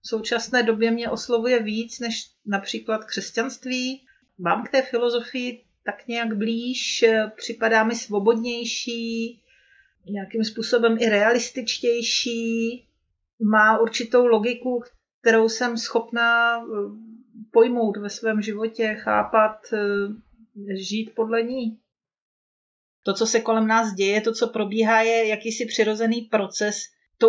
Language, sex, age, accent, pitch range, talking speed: Czech, female, 40-59, native, 215-240 Hz, 110 wpm